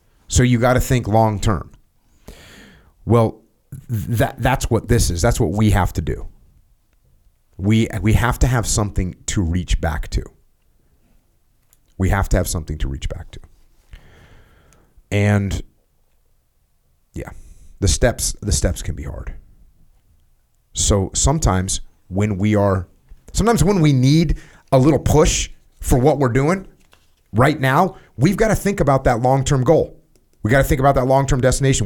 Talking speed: 155 wpm